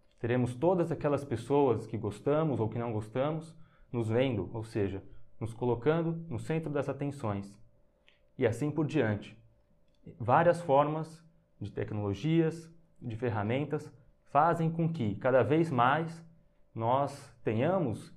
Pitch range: 115-145 Hz